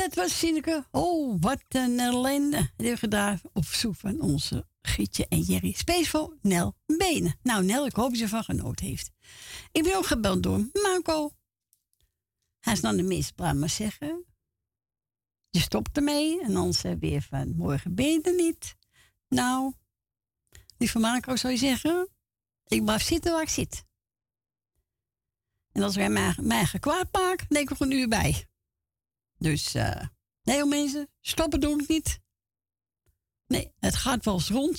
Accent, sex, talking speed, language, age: Dutch, female, 160 wpm, Dutch, 60-79